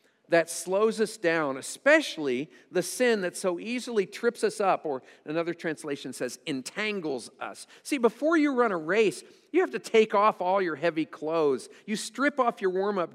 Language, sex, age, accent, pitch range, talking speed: English, male, 50-69, American, 170-245 Hz, 180 wpm